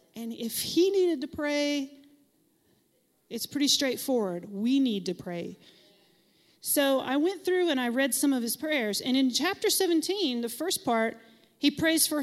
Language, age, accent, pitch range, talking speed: English, 40-59, American, 215-285 Hz, 165 wpm